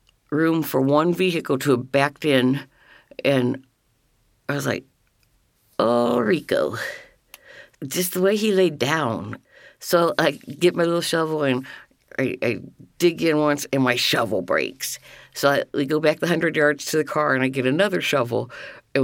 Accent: American